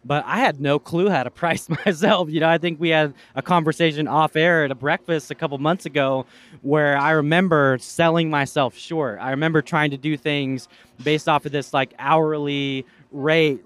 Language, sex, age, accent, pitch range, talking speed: English, male, 20-39, American, 135-170 Hz, 200 wpm